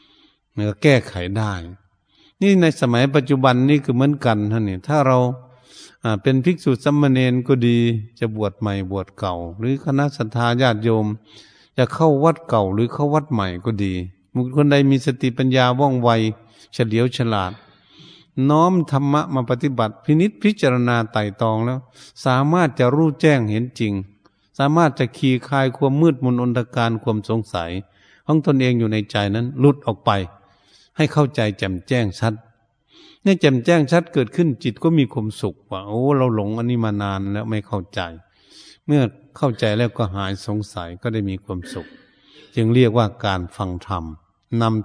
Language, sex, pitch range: Thai, male, 100-135 Hz